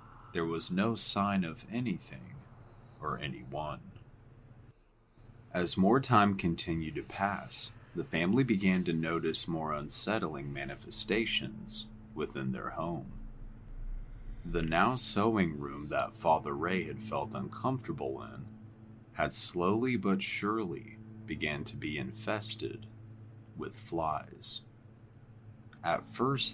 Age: 30-49